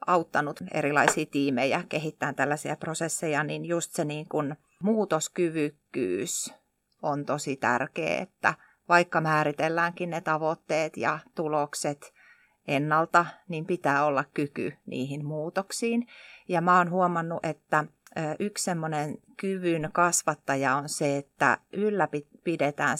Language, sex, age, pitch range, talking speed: Finnish, female, 30-49, 150-185 Hz, 110 wpm